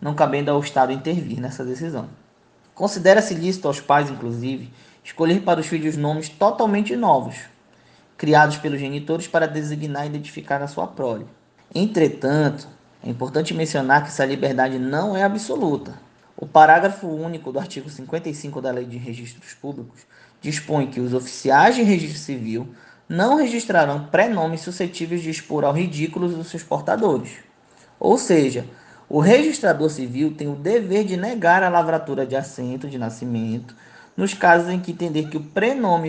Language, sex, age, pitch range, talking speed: Portuguese, male, 20-39, 135-170 Hz, 155 wpm